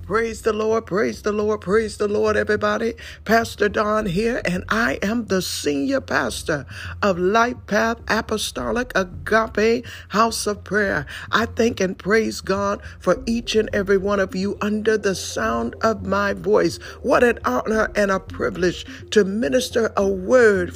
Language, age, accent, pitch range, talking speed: English, 60-79, American, 185-225 Hz, 160 wpm